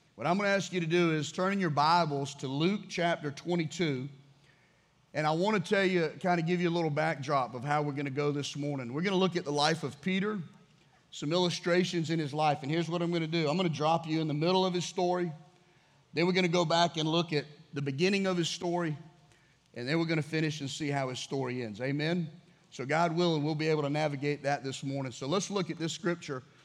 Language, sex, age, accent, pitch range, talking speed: English, male, 40-59, American, 145-180 Hz, 255 wpm